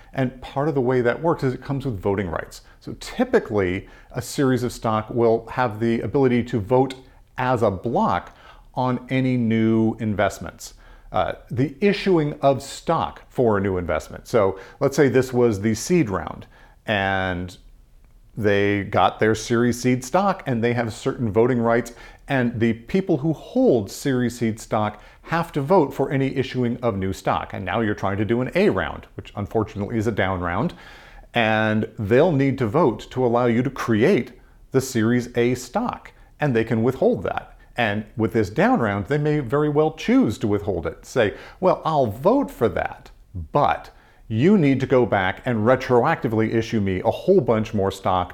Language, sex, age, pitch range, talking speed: English, male, 40-59, 105-135 Hz, 180 wpm